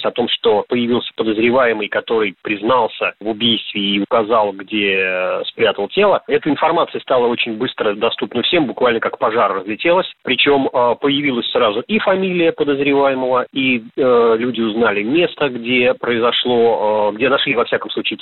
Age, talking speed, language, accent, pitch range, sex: 30-49, 145 wpm, Russian, native, 115-150 Hz, male